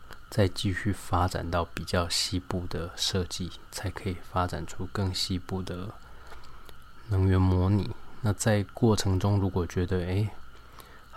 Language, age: Chinese, 20-39